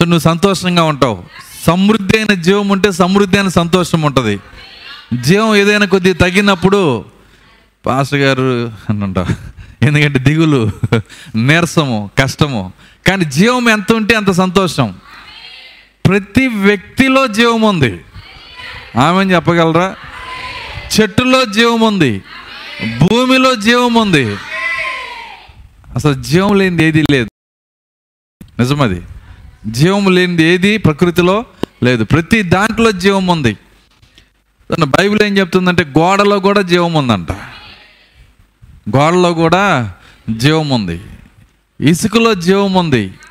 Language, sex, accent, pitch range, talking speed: Telugu, male, native, 120-200 Hz, 85 wpm